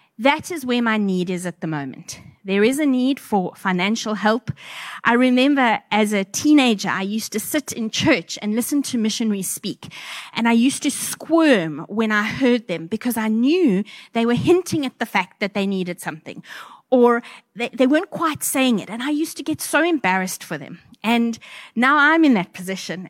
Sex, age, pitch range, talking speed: female, 30-49, 200-270 Hz, 195 wpm